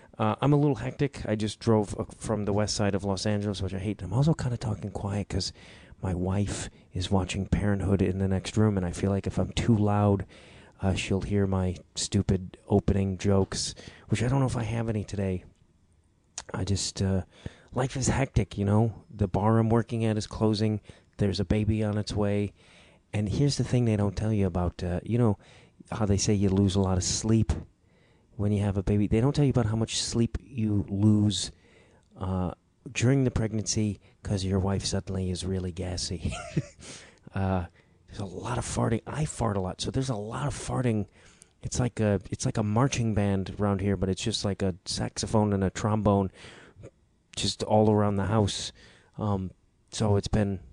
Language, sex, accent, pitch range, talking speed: English, male, American, 95-110 Hz, 200 wpm